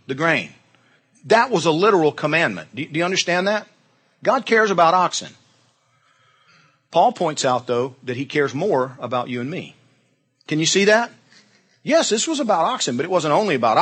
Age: 40-59